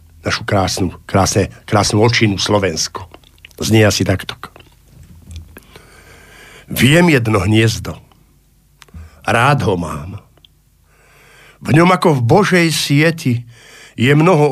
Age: 50-69